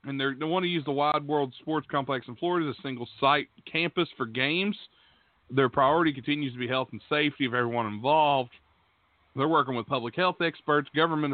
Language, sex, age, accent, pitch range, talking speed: English, male, 40-59, American, 120-145 Hz, 190 wpm